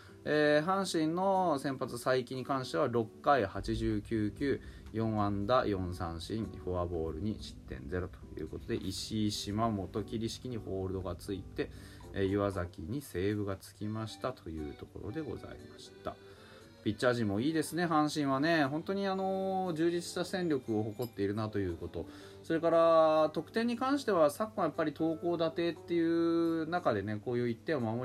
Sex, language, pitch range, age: male, Japanese, 100-170 Hz, 20-39